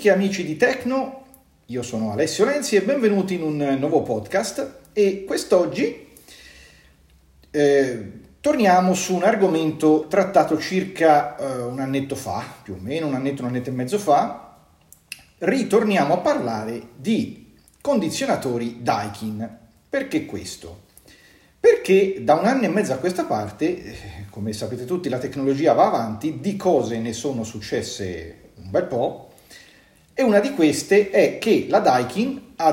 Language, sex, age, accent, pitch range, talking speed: Italian, male, 40-59, native, 125-190 Hz, 140 wpm